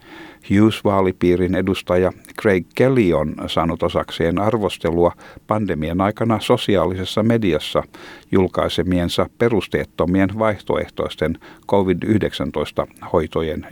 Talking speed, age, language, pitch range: 70 wpm, 60-79, Finnish, 90-110 Hz